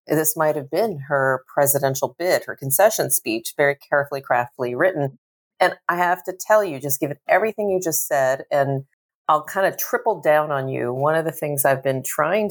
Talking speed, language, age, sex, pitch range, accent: 195 wpm, English, 40-59, female, 130-155 Hz, American